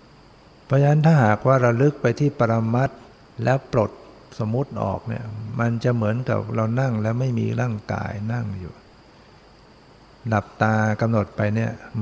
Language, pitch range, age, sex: Thai, 105-125 Hz, 60-79, male